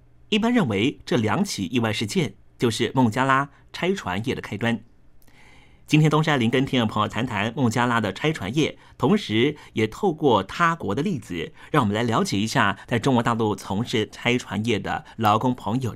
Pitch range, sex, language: 110-150 Hz, male, Chinese